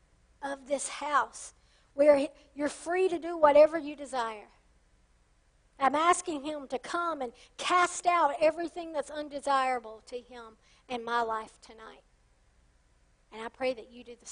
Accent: American